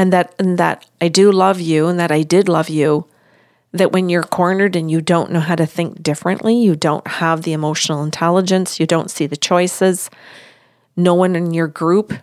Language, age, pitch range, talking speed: English, 40-59, 155-190 Hz, 205 wpm